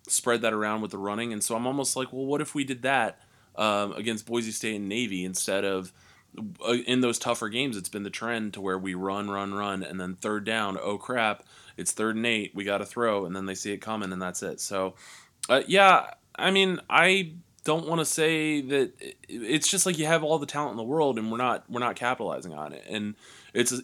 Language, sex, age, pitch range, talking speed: English, male, 20-39, 100-135 Hz, 235 wpm